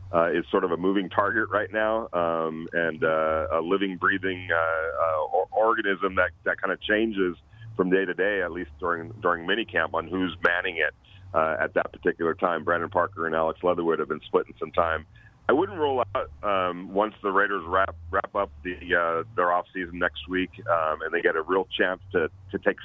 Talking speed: 205 wpm